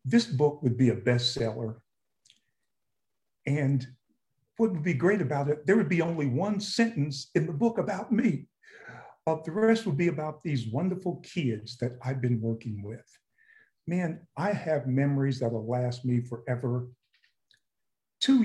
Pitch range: 120-160 Hz